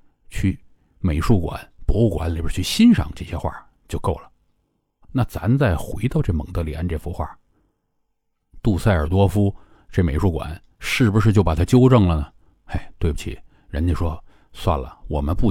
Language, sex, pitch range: Chinese, male, 85-110 Hz